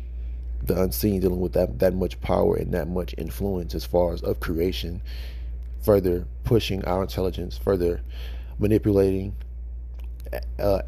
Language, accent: English, American